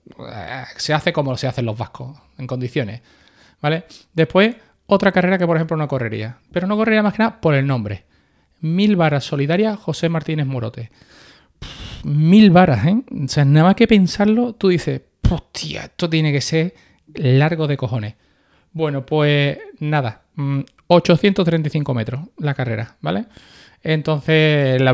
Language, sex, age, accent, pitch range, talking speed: Spanish, male, 30-49, Spanish, 135-180 Hz, 150 wpm